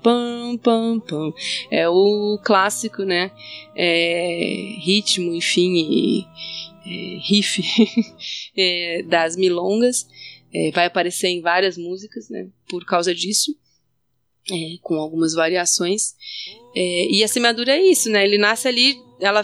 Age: 20-39